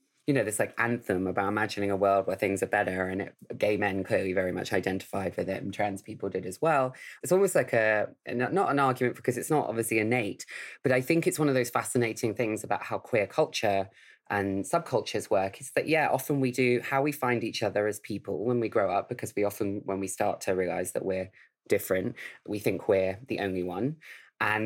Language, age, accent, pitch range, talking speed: English, 20-39, British, 95-120 Hz, 220 wpm